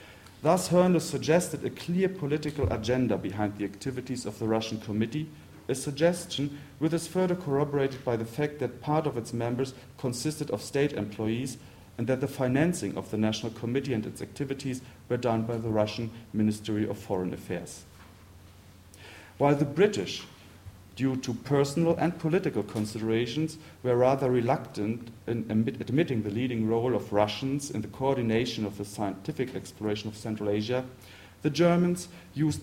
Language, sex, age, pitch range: French, male, 40-59, 110-145 Hz